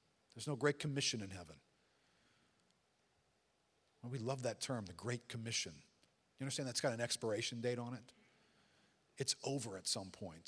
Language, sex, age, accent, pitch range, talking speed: English, male, 50-69, American, 105-130 Hz, 155 wpm